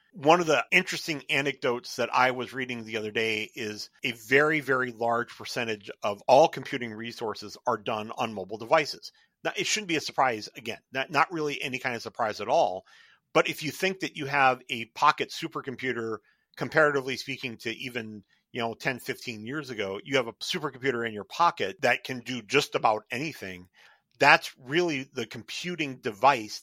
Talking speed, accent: 180 wpm, American